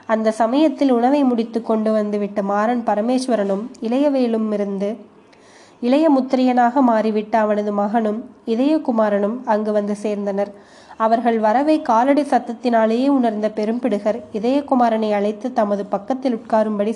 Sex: female